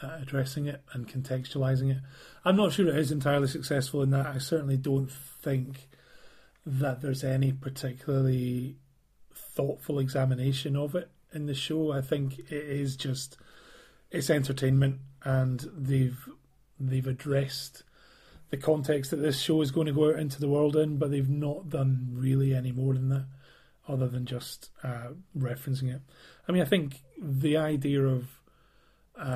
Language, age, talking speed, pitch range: English, 30-49, 155 wpm, 130-145 Hz